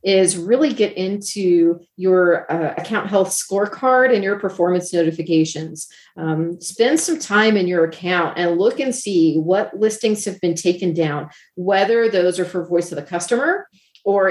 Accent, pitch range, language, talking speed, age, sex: American, 175-225 Hz, English, 165 wpm, 40-59, female